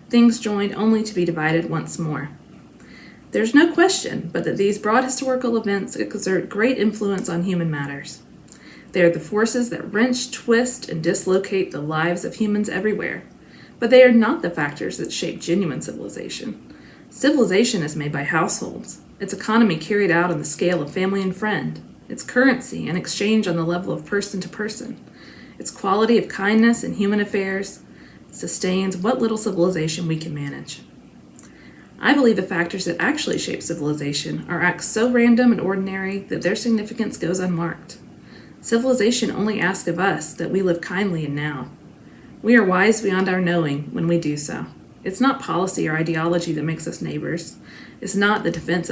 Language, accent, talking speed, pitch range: English, American, 175 wpm, 170-220 Hz